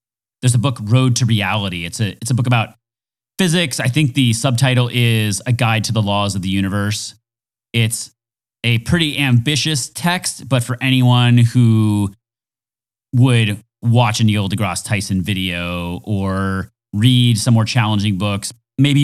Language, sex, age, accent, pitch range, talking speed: English, male, 30-49, American, 110-125 Hz, 150 wpm